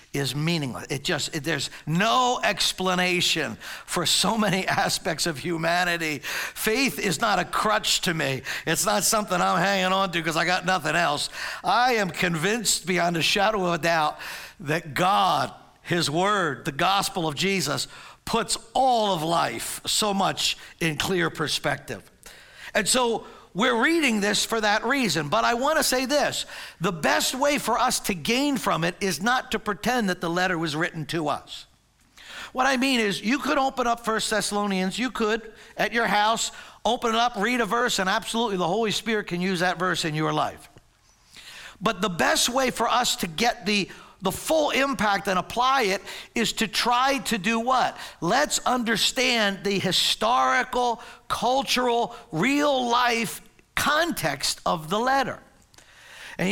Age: 60-79